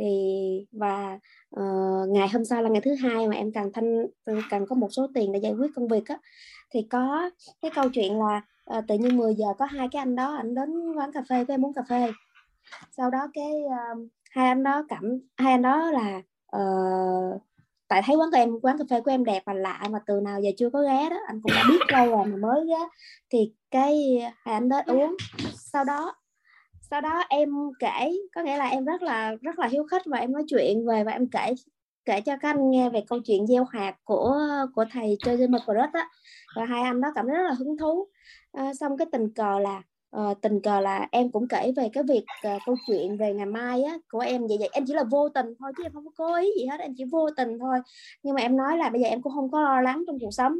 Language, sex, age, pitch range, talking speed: Vietnamese, male, 20-39, 215-280 Hz, 250 wpm